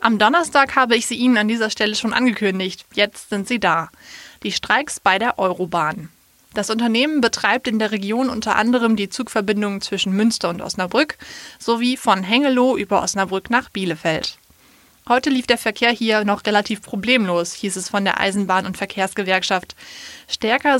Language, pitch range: German, 195-250 Hz